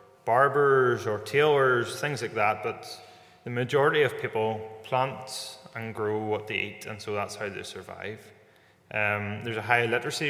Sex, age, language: male, 20-39, English